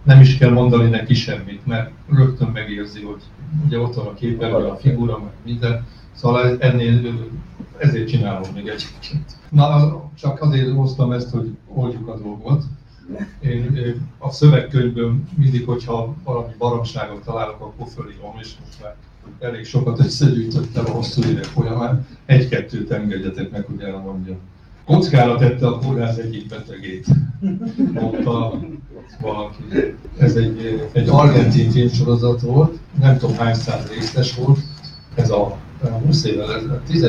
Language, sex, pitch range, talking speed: English, male, 115-140 Hz, 130 wpm